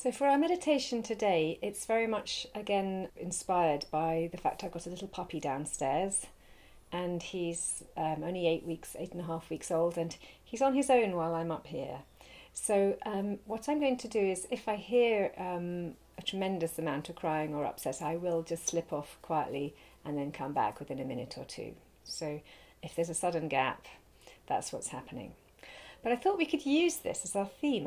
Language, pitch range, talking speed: English, 165-215 Hz, 200 wpm